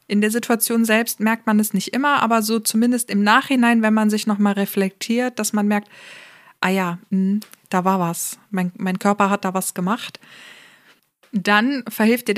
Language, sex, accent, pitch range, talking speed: German, female, German, 200-230 Hz, 180 wpm